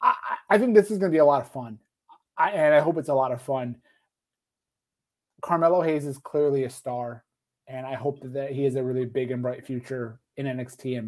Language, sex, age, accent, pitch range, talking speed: English, male, 30-49, American, 130-170 Hz, 215 wpm